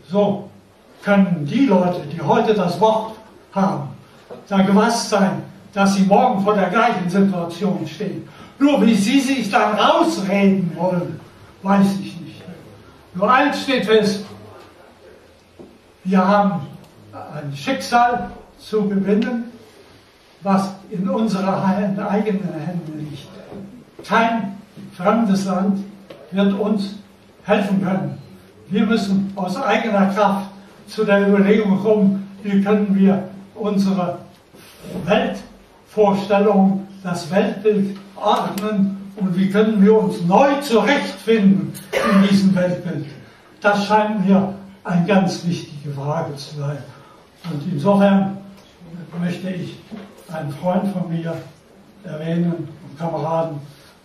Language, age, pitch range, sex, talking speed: German, 60-79, 175-210 Hz, male, 110 wpm